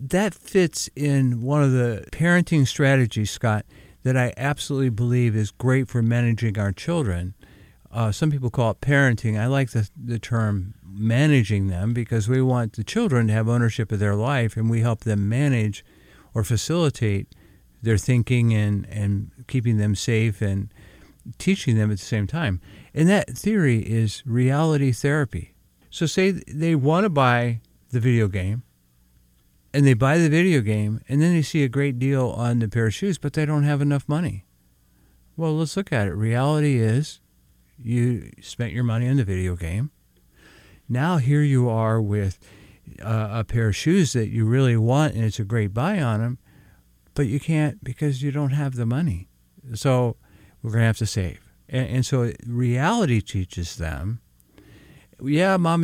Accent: American